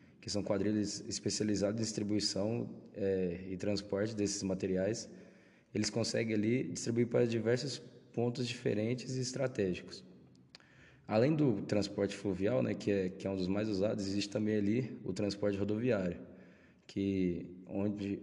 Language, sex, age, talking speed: Portuguese, male, 20-39, 140 wpm